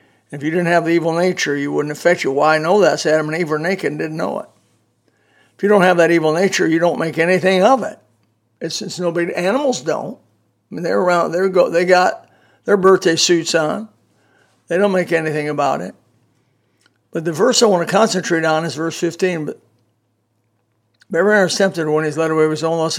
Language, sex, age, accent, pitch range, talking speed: English, male, 60-79, American, 120-185 Hz, 220 wpm